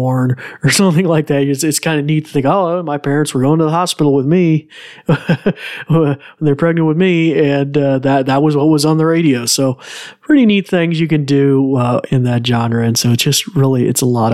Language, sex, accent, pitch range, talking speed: English, male, American, 120-165 Hz, 225 wpm